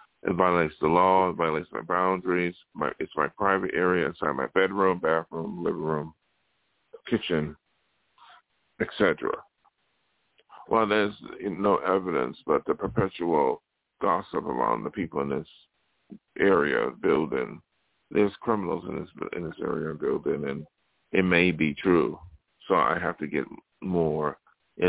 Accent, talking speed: American, 140 wpm